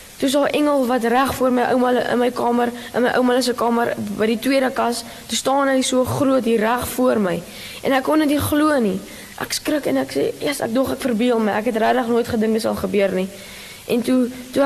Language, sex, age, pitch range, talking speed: English, female, 10-29, 220-260 Hz, 240 wpm